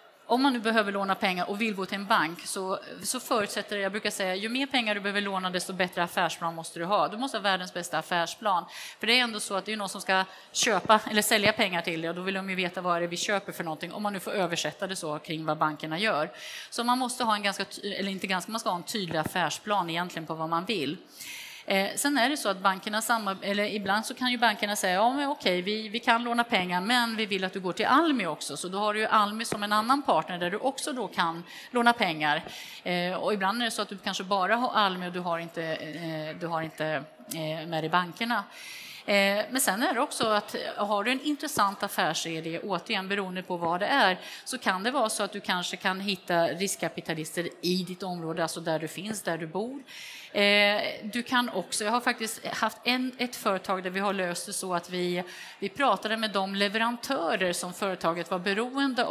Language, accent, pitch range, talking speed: Swedish, native, 175-220 Hz, 235 wpm